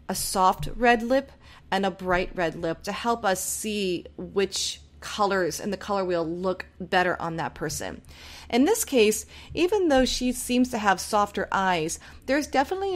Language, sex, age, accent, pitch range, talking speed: English, female, 30-49, American, 180-245 Hz, 170 wpm